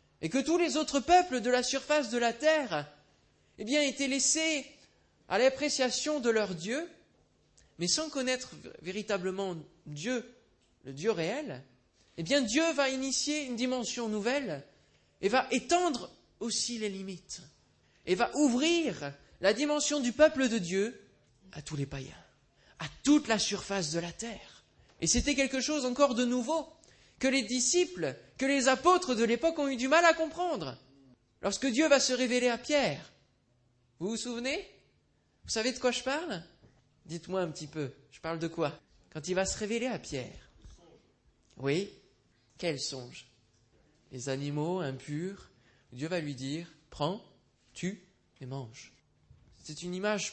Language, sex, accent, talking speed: French, male, French, 155 wpm